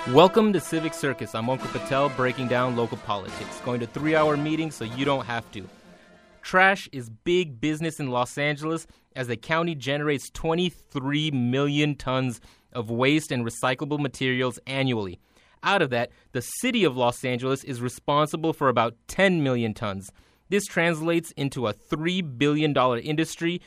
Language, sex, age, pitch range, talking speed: English, male, 30-49, 125-155 Hz, 155 wpm